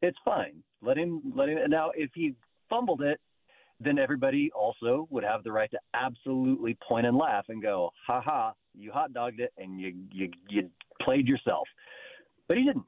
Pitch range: 110-170 Hz